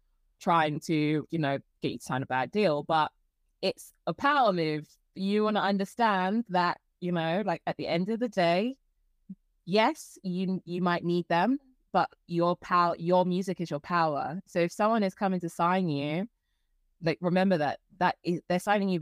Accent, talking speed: British, 185 wpm